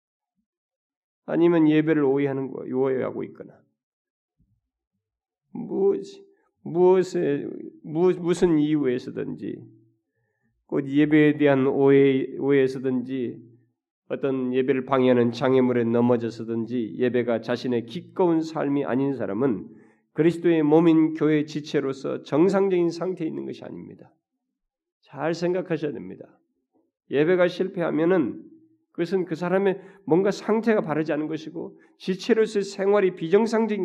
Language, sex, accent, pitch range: Korean, male, native, 135-195 Hz